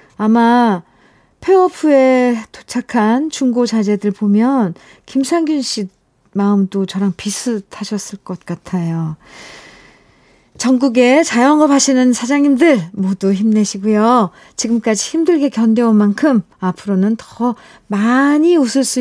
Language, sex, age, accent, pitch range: Korean, female, 40-59, native, 190-255 Hz